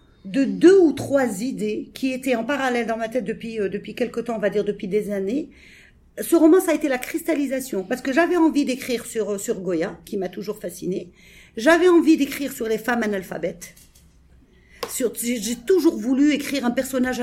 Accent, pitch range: French, 230-290 Hz